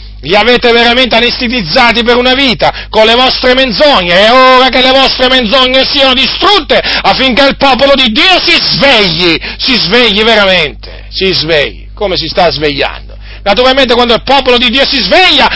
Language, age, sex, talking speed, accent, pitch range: Italian, 40-59, male, 165 wpm, native, 210-275 Hz